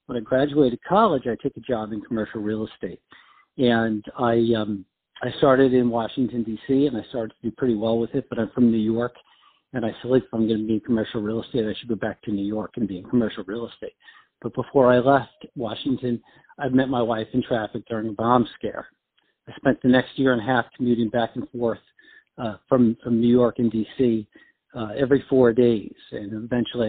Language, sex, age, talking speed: English, male, 50-69, 225 wpm